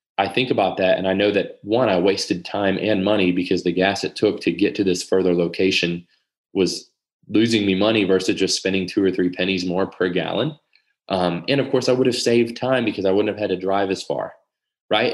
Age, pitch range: 20-39, 95-115 Hz